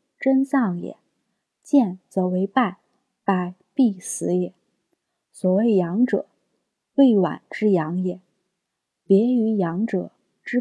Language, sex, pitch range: Chinese, female, 180-235 Hz